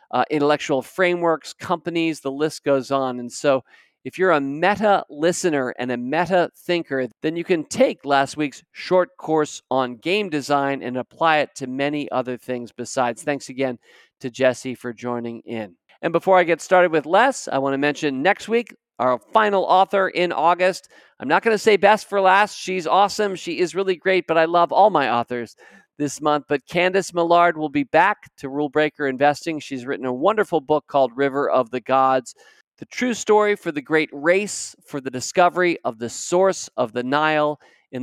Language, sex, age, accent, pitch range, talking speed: English, male, 50-69, American, 135-180 Hz, 190 wpm